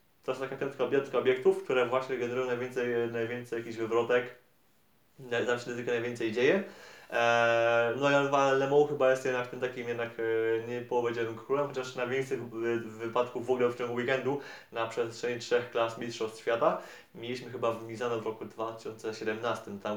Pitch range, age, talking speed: 115-140 Hz, 20-39, 155 wpm